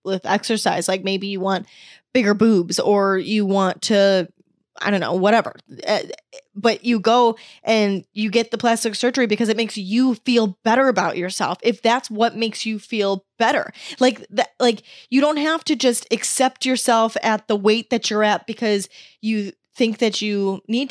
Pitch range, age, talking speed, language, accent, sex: 200-245 Hz, 10-29, 180 wpm, English, American, female